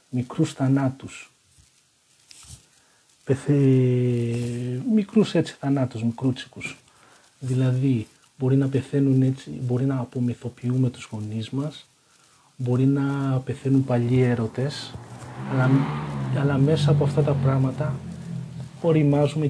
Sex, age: male, 40-59